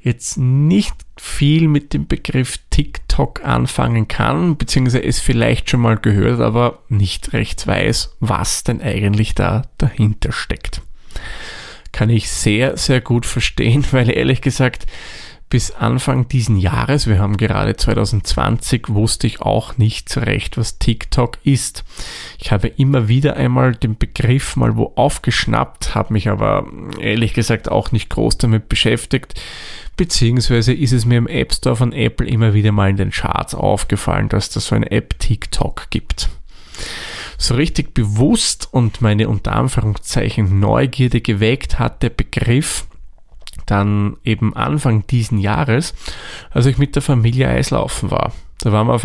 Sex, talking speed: male, 150 wpm